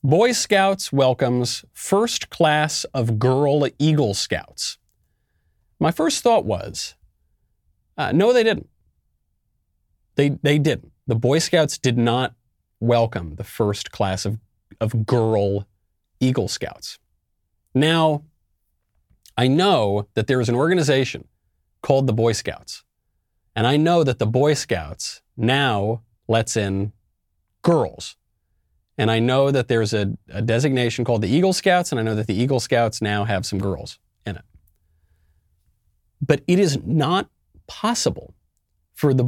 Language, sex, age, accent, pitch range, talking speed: English, male, 30-49, American, 90-140 Hz, 135 wpm